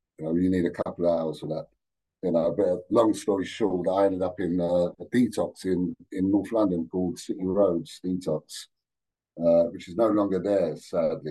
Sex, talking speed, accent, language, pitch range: male, 210 wpm, British, English, 85-100 Hz